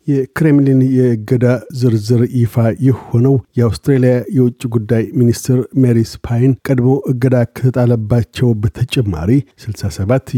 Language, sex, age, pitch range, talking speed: Amharic, male, 50-69, 115-130 Hz, 95 wpm